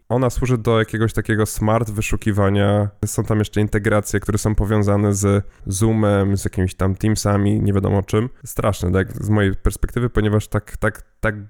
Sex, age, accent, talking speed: male, 10-29, native, 165 wpm